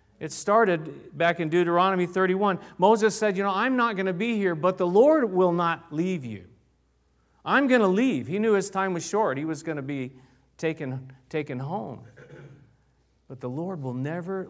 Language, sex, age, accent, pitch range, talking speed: English, male, 40-59, American, 140-200 Hz, 190 wpm